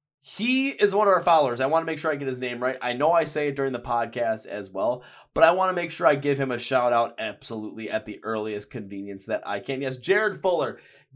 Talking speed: 265 wpm